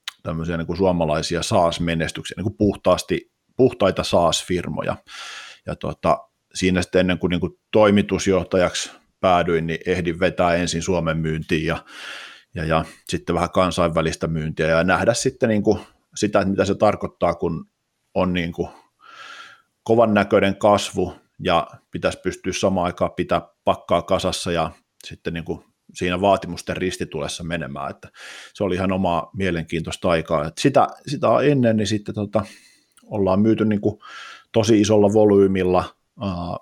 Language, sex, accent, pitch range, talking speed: Finnish, male, native, 85-100 Hz, 140 wpm